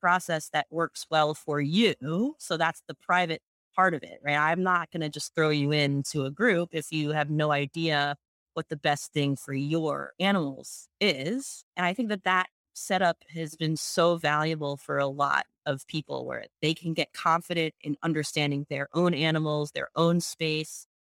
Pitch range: 155-190 Hz